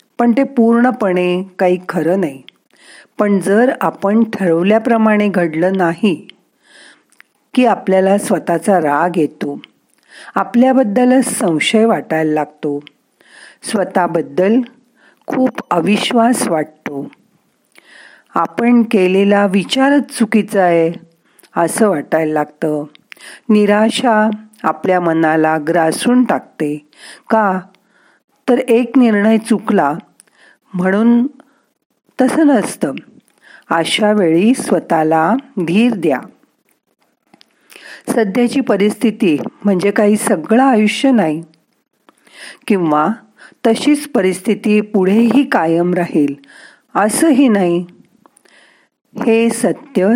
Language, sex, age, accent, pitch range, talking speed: Marathi, female, 50-69, native, 175-240 Hz, 80 wpm